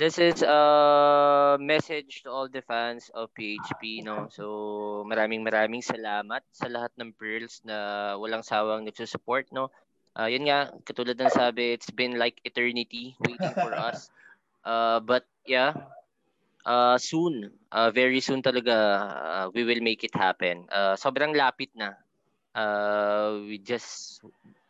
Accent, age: Filipino, 20-39